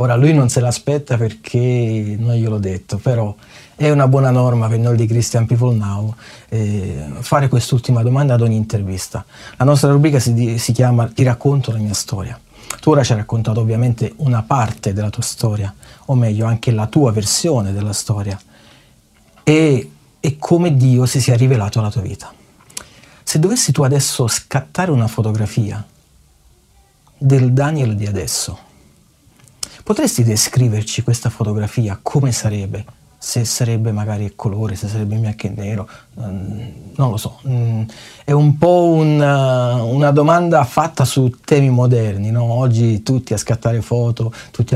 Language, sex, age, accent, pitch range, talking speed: Italian, male, 30-49, native, 110-135 Hz, 155 wpm